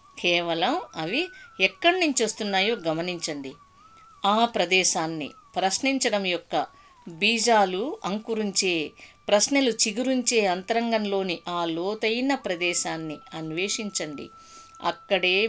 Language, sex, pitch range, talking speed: Telugu, female, 185-275 Hz, 80 wpm